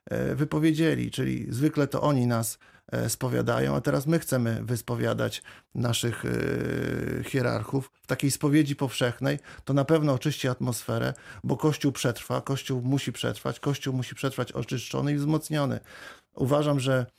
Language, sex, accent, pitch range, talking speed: Polish, male, native, 120-140 Hz, 130 wpm